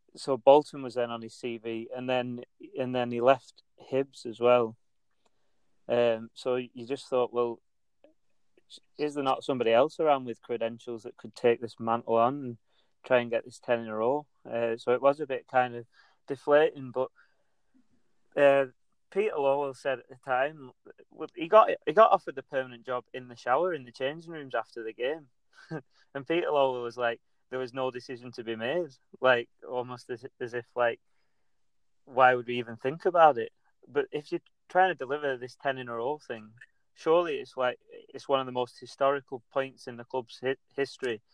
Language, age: English, 30-49